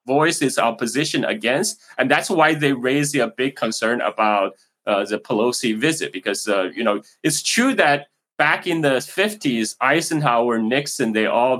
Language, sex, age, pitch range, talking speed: English, male, 20-39, 120-160 Hz, 165 wpm